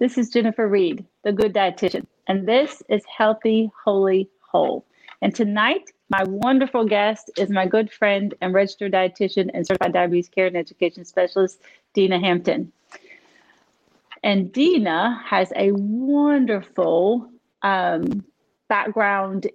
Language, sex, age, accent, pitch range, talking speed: English, female, 30-49, American, 185-210 Hz, 125 wpm